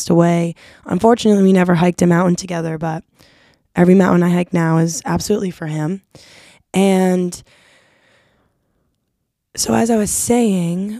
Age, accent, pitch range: 20-39, American, 170-195 Hz